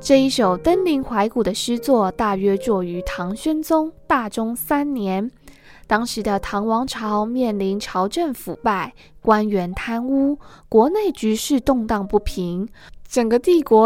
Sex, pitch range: female, 205-270 Hz